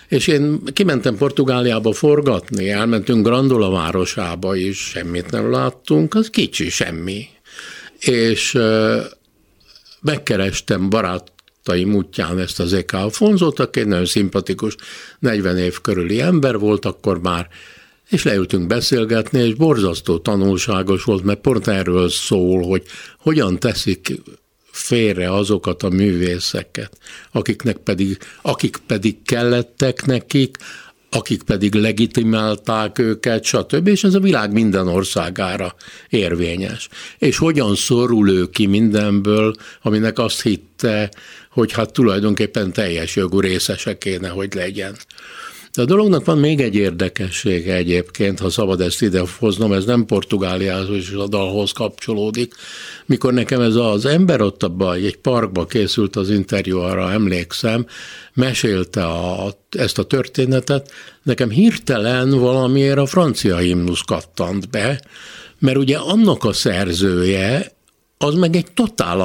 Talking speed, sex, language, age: 125 wpm, male, Hungarian, 60-79